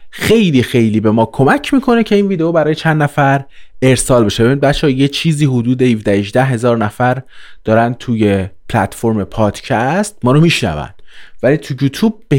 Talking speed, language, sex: 165 wpm, Persian, male